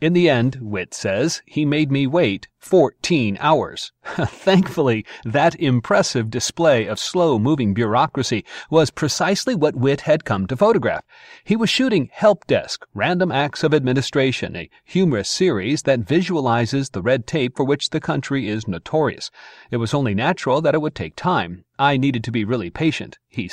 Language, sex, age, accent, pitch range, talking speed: English, male, 40-59, American, 115-150 Hz, 165 wpm